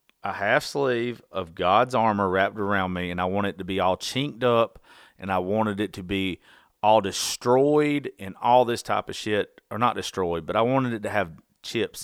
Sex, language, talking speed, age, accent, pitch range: male, English, 210 wpm, 30-49, American, 95-125 Hz